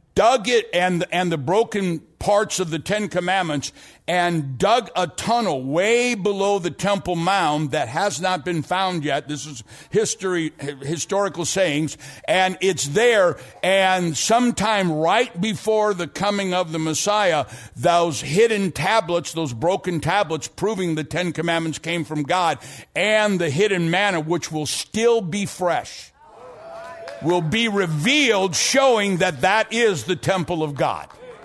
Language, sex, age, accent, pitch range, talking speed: English, male, 60-79, American, 160-220 Hz, 145 wpm